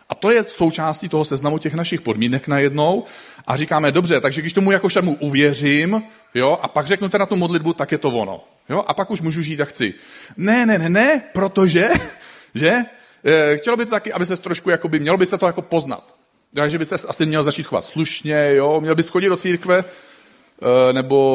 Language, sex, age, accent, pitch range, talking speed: Czech, male, 40-59, native, 140-180 Hz, 200 wpm